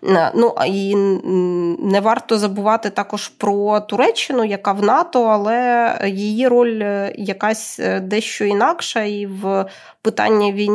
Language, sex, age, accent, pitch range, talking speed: Ukrainian, female, 20-39, native, 190-225 Hz, 110 wpm